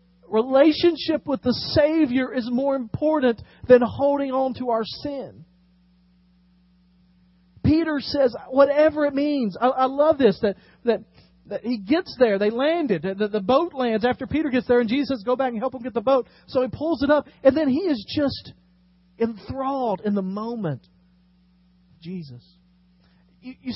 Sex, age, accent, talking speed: male, 40-59, American, 165 wpm